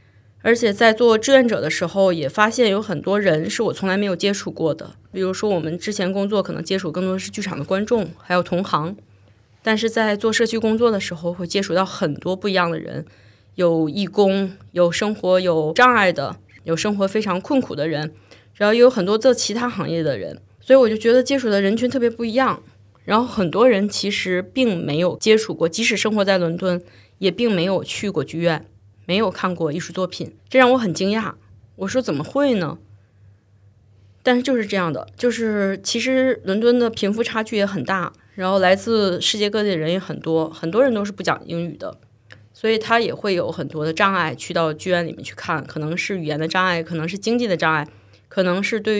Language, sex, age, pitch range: Chinese, female, 20-39, 165-215 Hz